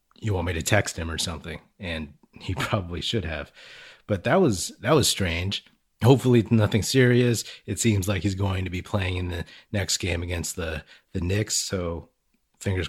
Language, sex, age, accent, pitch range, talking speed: English, male, 30-49, American, 90-115 Hz, 185 wpm